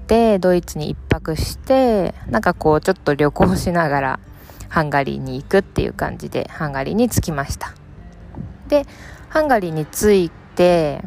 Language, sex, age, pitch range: Japanese, female, 20-39, 145-185 Hz